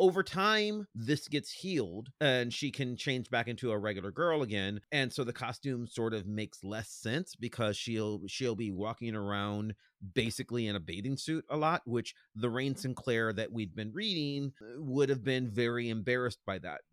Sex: male